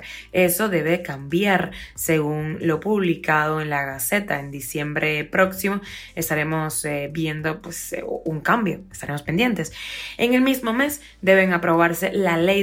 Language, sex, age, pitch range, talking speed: Spanish, female, 20-39, 155-190 Hz, 140 wpm